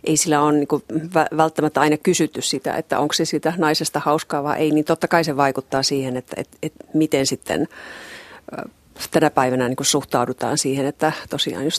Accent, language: native, Finnish